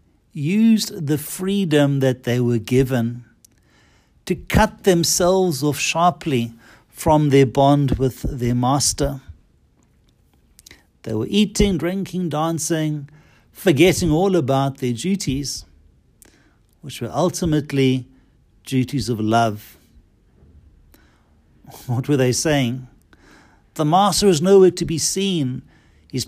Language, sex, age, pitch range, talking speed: English, male, 60-79, 115-165 Hz, 105 wpm